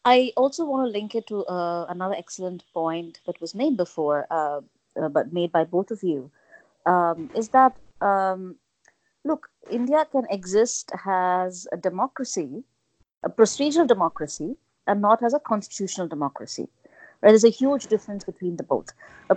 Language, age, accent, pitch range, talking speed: English, 30-49, Indian, 175-245 Hz, 160 wpm